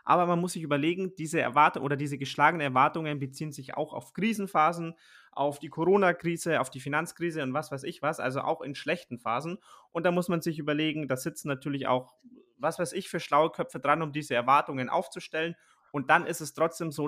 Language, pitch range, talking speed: German, 130-155 Hz, 205 wpm